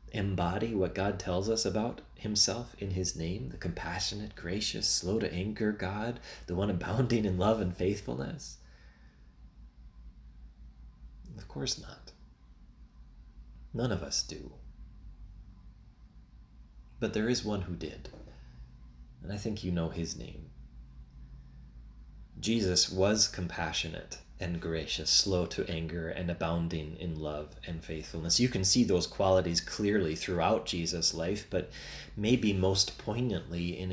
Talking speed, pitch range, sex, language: 125 wpm, 80-105 Hz, male, English